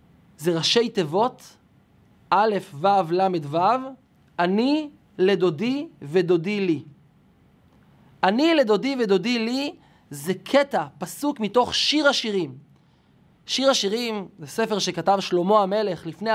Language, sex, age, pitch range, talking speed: Hebrew, male, 20-39, 180-250 Hz, 105 wpm